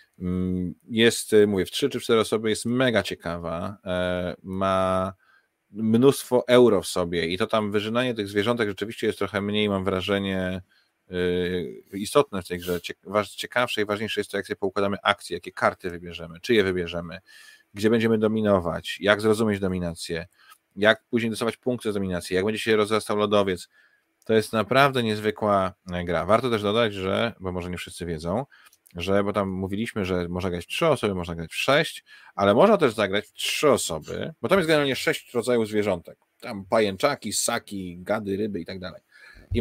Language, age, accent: Polish, 30-49, native